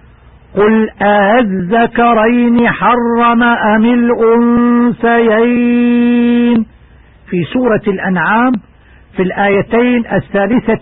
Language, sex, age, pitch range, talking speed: Arabic, male, 50-69, 195-240 Hz, 65 wpm